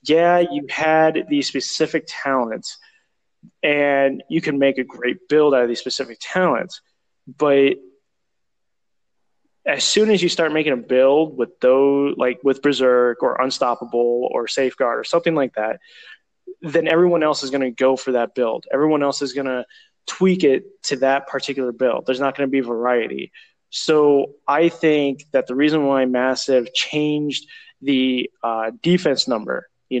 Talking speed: 160 wpm